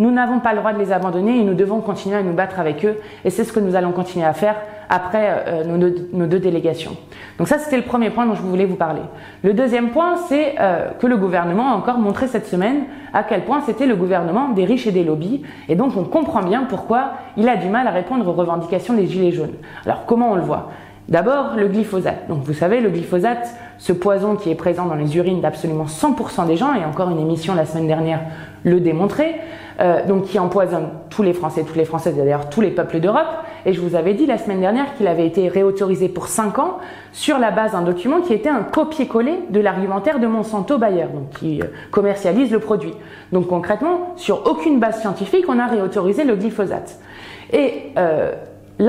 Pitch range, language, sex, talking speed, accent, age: 175-240 Hz, French, female, 220 wpm, French, 20-39